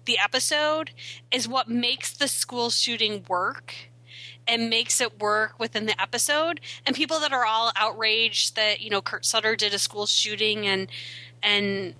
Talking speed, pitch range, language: 165 wpm, 190-255 Hz, English